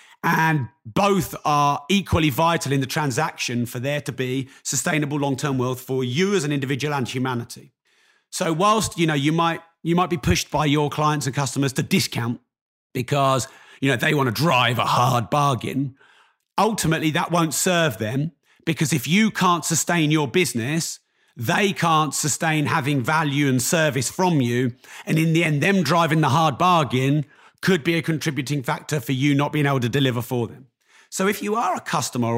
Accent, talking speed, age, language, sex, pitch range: British, 185 wpm, 40-59, English, male, 135-165 Hz